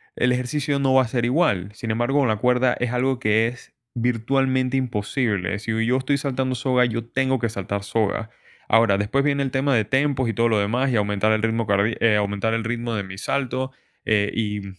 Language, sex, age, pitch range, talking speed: Spanish, male, 20-39, 110-130 Hz, 200 wpm